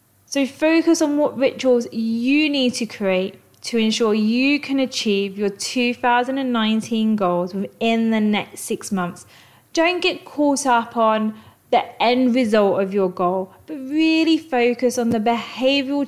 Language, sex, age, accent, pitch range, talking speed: English, female, 30-49, British, 210-265 Hz, 145 wpm